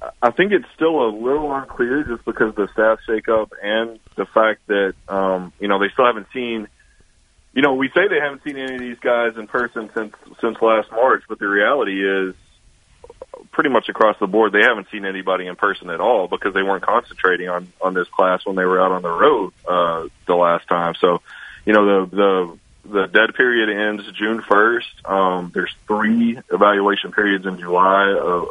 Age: 20-39